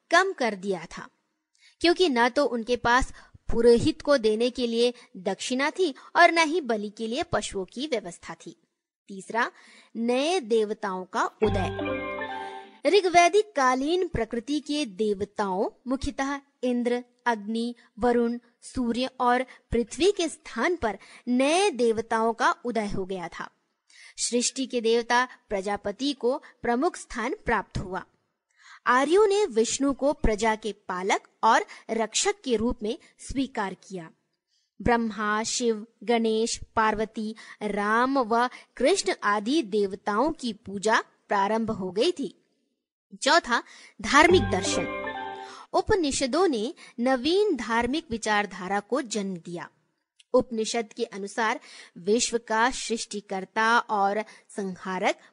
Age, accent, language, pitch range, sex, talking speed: 20-39, native, Hindi, 215-270 Hz, female, 120 wpm